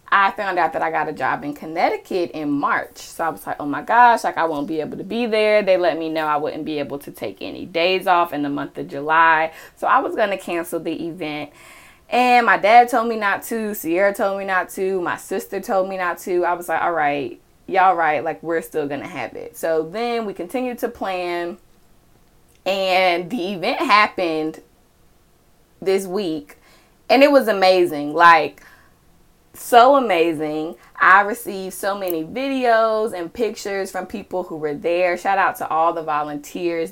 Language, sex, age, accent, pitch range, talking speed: English, female, 20-39, American, 160-210 Hz, 195 wpm